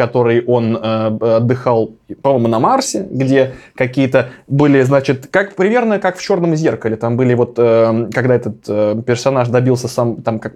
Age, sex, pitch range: 20-39, male, 120-145 Hz